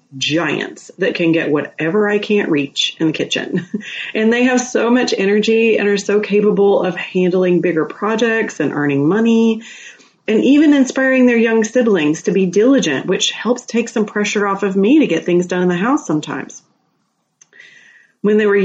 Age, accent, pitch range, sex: 30-49, American, 160-215 Hz, female